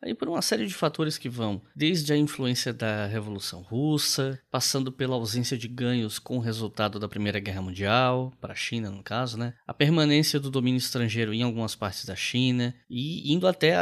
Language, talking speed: Portuguese, 200 wpm